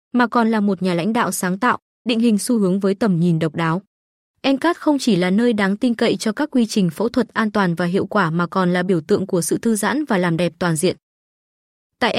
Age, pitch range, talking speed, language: 20-39, 190-240 Hz, 255 wpm, Vietnamese